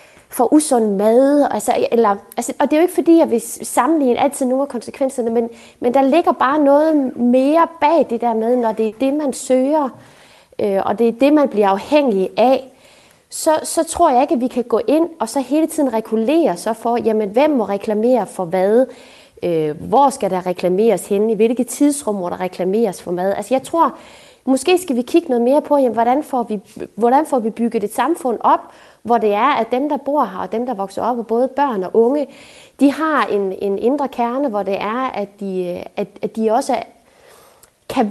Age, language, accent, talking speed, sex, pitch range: 20-39, Danish, native, 215 wpm, female, 220-280 Hz